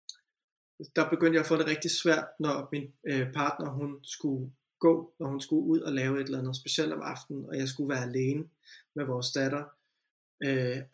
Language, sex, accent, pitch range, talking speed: Danish, male, native, 135-155 Hz, 195 wpm